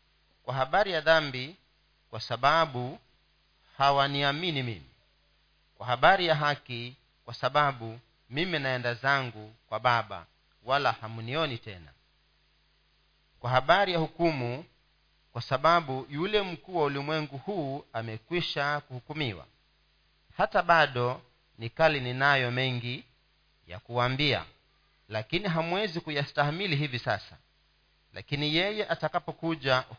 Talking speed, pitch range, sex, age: 100 wpm, 120-155 Hz, male, 40-59